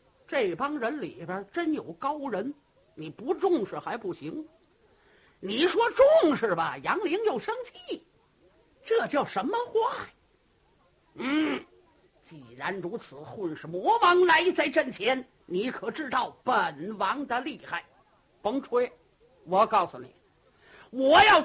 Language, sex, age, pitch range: Chinese, male, 50-69, 225-370 Hz